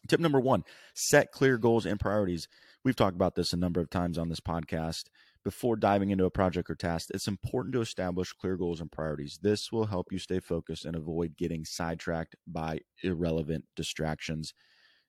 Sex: male